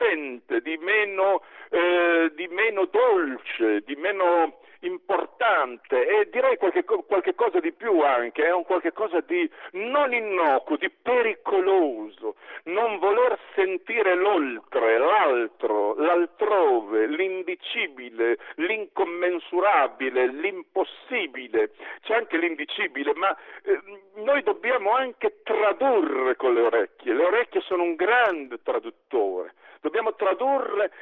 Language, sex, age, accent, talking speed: Italian, male, 50-69, native, 105 wpm